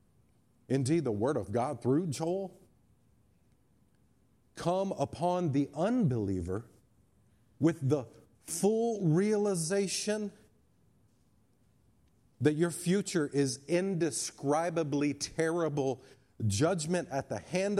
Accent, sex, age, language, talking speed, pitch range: American, male, 40-59, English, 85 wpm, 125-190 Hz